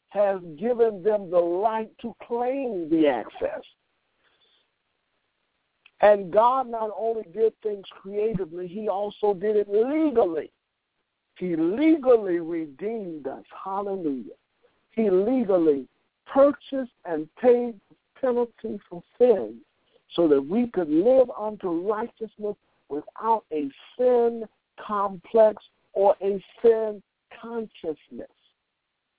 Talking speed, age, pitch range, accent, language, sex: 105 wpm, 60-79, 190-240 Hz, American, English, male